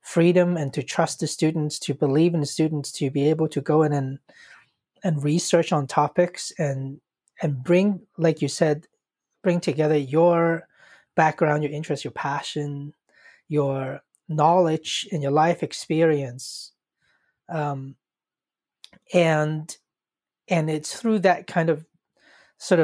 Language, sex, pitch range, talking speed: English, male, 145-175 Hz, 135 wpm